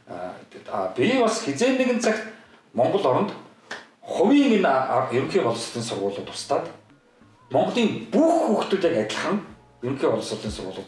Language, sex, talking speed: Russian, male, 150 wpm